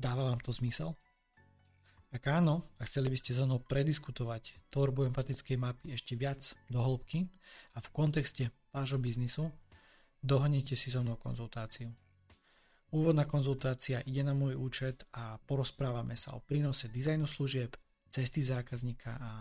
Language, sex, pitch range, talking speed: Slovak, male, 120-140 Hz, 140 wpm